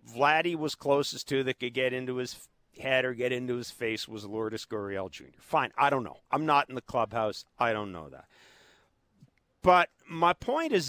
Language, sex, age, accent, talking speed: English, male, 50-69, American, 200 wpm